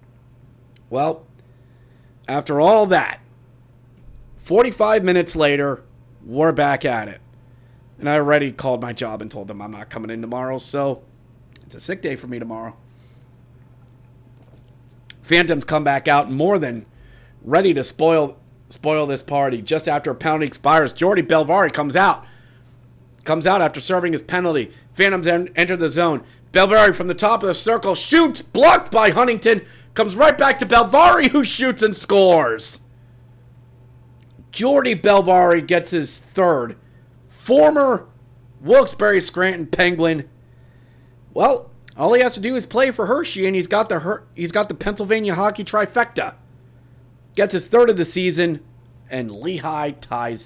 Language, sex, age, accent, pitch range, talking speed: English, male, 30-49, American, 125-180 Hz, 145 wpm